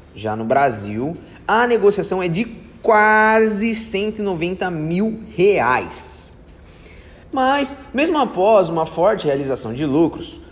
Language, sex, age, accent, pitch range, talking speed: English, male, 20-39, Brazilian, 145-220 Hz, 110 wpm